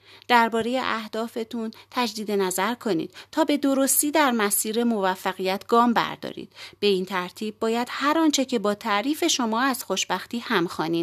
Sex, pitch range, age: female, 190-270 Hz, 30-49